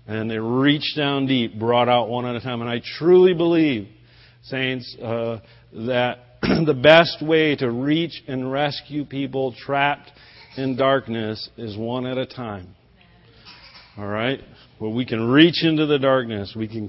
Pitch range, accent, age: 115-145 Hz, American, 50-69